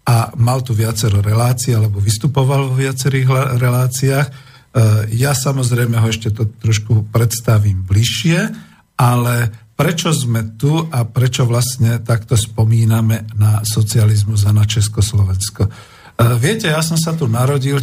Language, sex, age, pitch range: Slovak, male, 50-69, 110-135 Hz